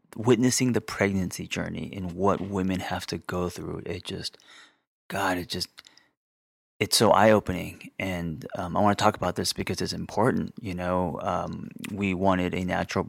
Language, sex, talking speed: English, male, 170 wpm